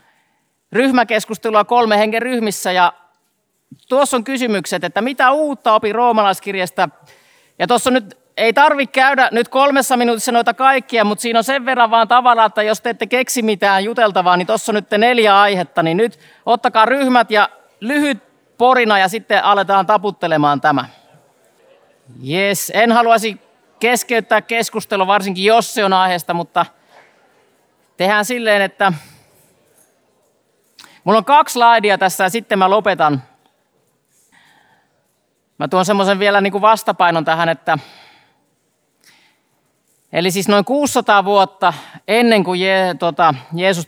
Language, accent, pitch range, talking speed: Finnish, native, 180-235 Hz, 130 wpm